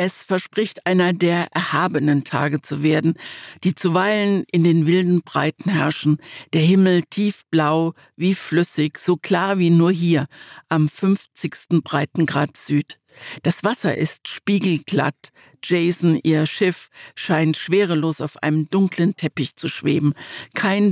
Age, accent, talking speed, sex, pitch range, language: 60-79, German, 130 wpm, female, 155-185 Hz, German